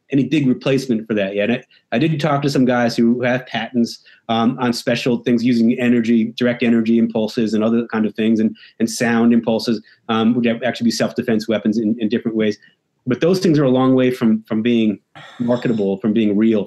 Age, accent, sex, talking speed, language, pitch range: 30-49, American, male, 210 wpm, English, 110-130 Hz